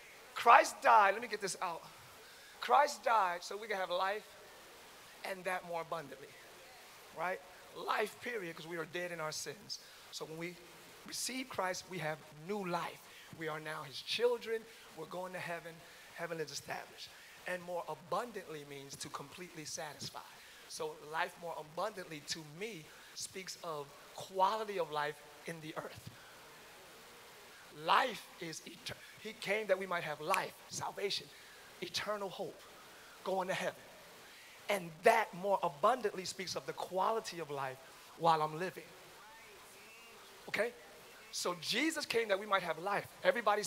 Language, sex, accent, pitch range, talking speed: English, male, American, 160-210 Hz, 150 wpm